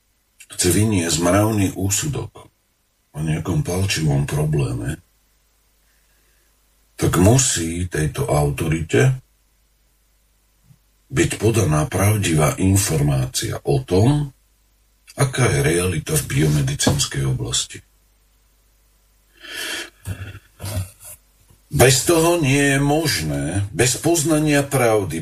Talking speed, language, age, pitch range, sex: 75 wpm, Slovak, 50-69, 95-135 Hz, male